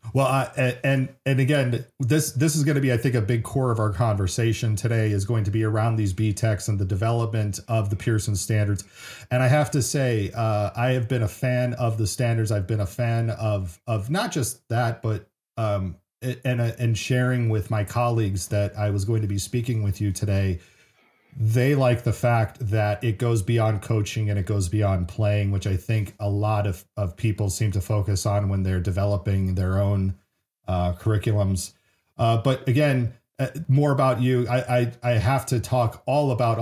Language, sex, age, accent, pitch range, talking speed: English, male, 40-59, American, 105-125 Hz, 200 wpm